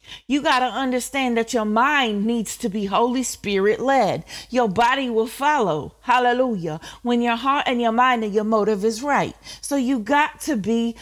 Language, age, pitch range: English, 40-59, 205-245 Hz